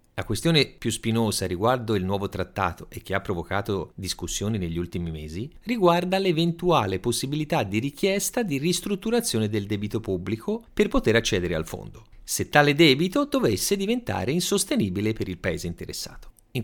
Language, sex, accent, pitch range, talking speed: Italian, male, native, 100-165 Hz, 150 wpm